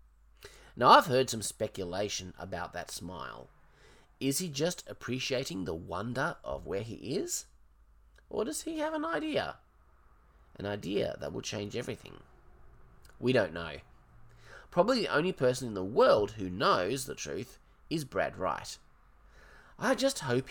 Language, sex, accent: English, male, Australian